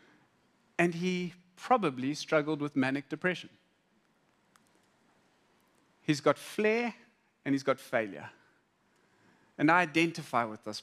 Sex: male